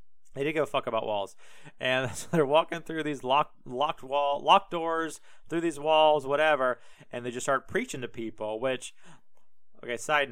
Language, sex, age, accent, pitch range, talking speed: English, male, 30-49, American, 120-150 Hz, 185 wpm